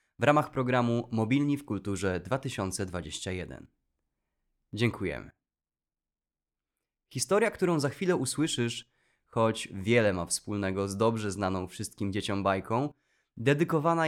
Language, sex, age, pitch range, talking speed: Polish, male, 20-39, 95-120 Hz, 100 wpm